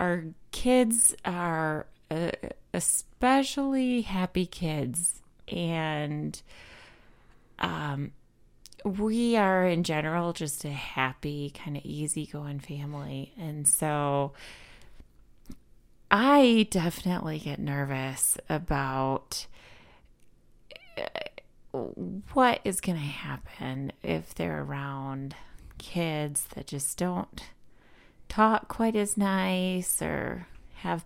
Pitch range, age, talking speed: 130-180 Hz, 30-49, 85 wpm